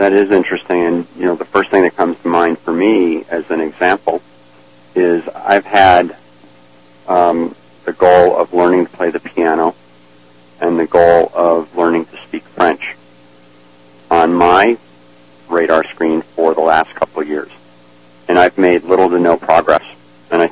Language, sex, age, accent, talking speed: English, male, 40-59, American, 165 wpm